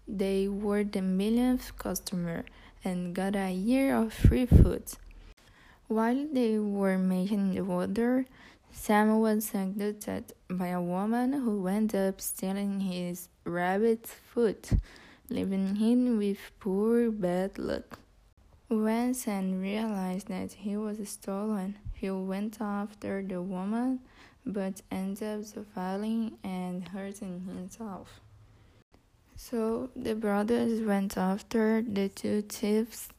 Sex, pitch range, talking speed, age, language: female, 190-225 Hz, 115 wpm, 10-29, Portuguese